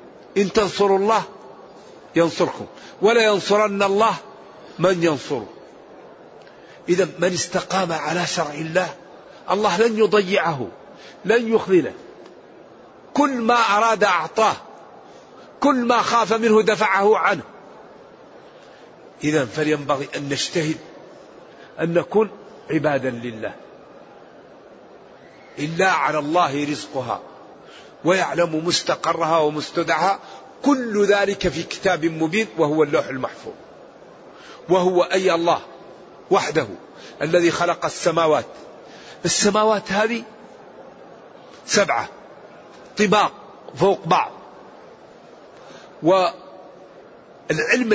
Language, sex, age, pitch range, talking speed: Arabic, male, 50-69, 165-220 Hz, 85 wpm